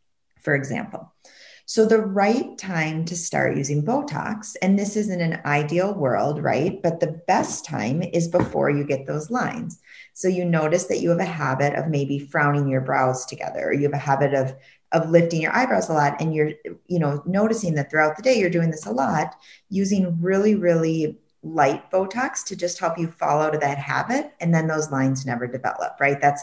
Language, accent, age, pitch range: English, American, 30-49, 135-180 Hz